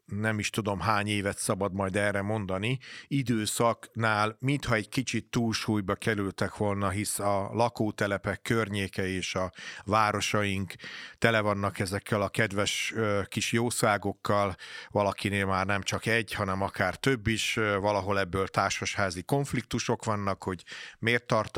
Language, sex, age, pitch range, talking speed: Hungarian, male, 40-59, 100-115 Hz, 130 wpm